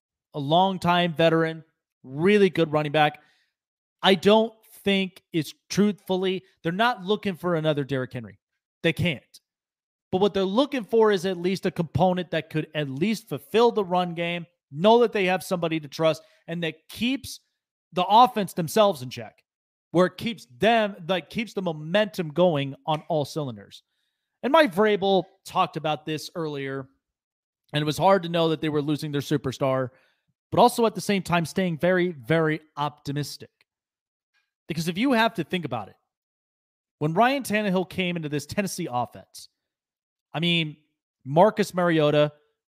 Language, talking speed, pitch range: English, 160 wpm, 150-195 Hz